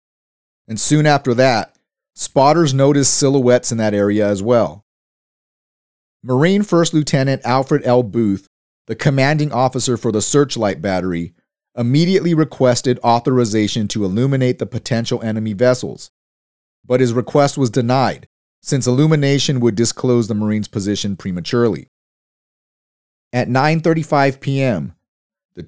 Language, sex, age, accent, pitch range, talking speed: English, male, 30-49, American, 110-140 Hz, 120 wpm